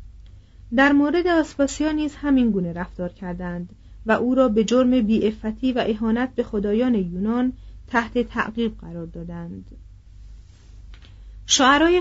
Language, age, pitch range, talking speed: Persian, 40-59, 180-250 Hz, 115 wpm